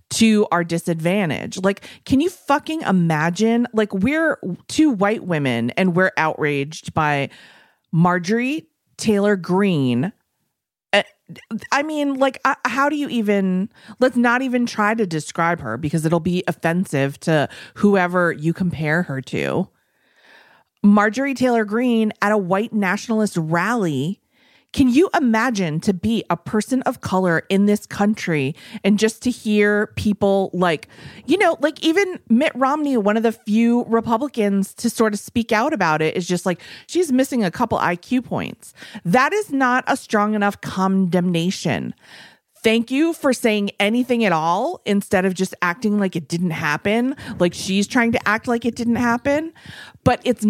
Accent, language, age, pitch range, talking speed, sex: American, English, 30-49, 180-240 Hz, 155 wpm, female